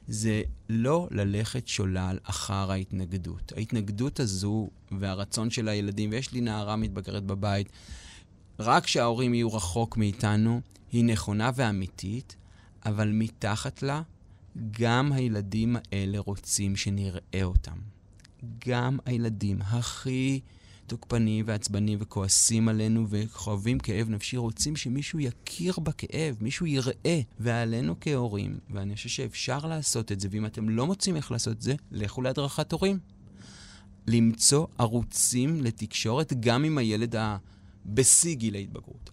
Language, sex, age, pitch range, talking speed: Hebrew, male, 30-49, 100-125 Hz, 120 wpm